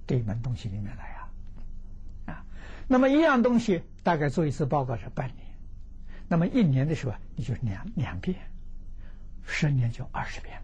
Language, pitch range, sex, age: Chinese, 95-145 Hz, male, 60-79